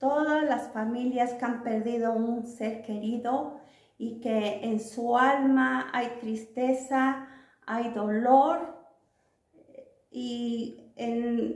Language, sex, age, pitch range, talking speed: Spanish, female, 40-59, 230-270 Hz, 105 wpm